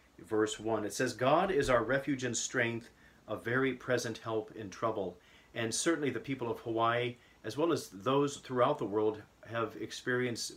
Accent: American